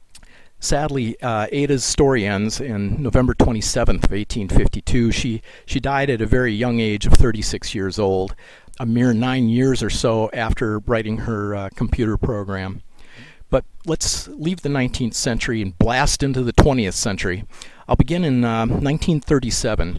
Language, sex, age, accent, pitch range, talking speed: English, male, 50-69, American, 105-145 Hz, 150 wpm